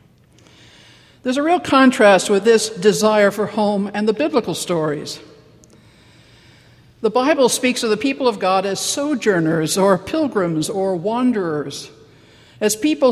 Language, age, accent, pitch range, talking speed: English, 60-79, American, 175-235 Hz, 135 wpm